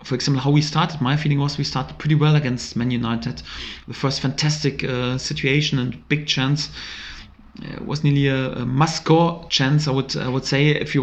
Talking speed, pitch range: 200 wpm, 130-150 Hz